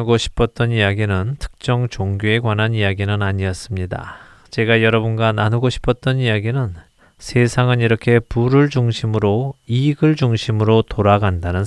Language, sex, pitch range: Korean, male, 100-130 Hz